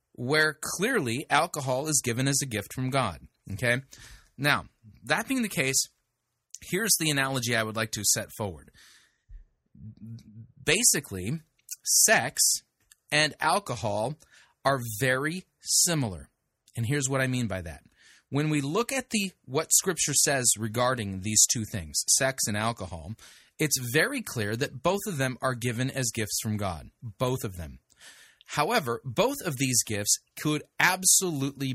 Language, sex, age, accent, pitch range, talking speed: English, male, 30-49, American, 115-175 Hz, 145 wpm